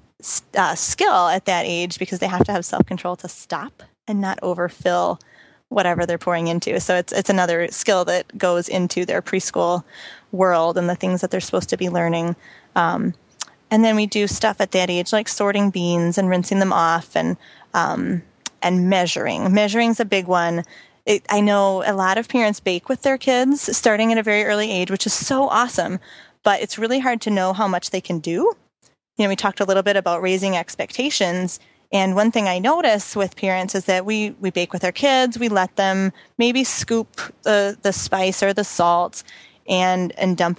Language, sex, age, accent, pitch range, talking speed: English, female, 20-39, American, 180-210 Hz, 200 wpm